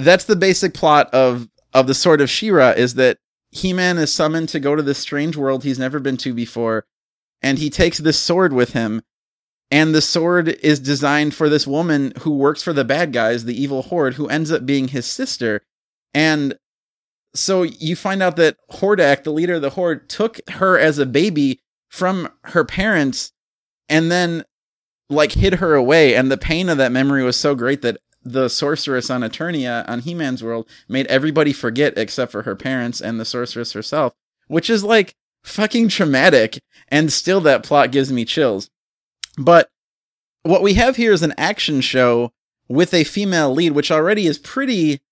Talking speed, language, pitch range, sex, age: 185 wpm, English, 130-165 Hz, male, 30-49